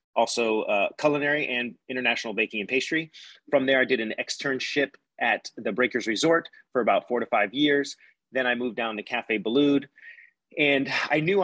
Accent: American